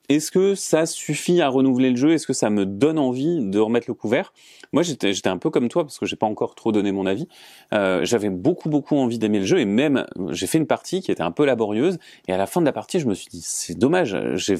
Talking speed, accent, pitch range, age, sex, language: 275 wpm, French, 100-145 Hz, 30-49, male, French